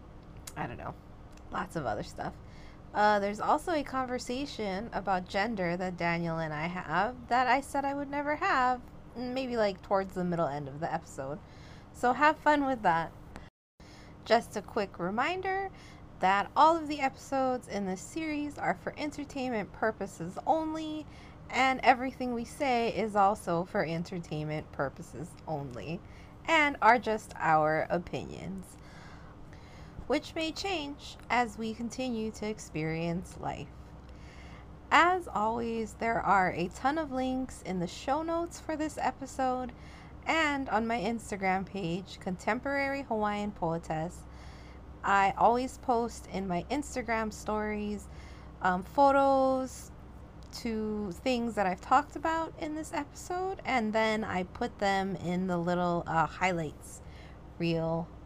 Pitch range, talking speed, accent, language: 175-260 Hz, 135 wpm, American, English